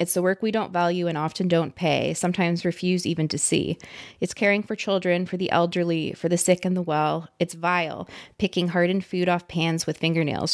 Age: 20-39